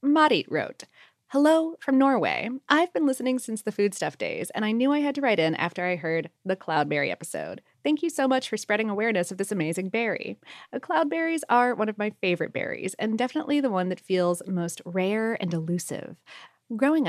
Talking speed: 195 wpm